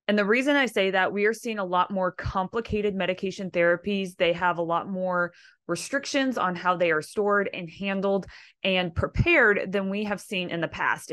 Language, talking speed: English, 200 wpm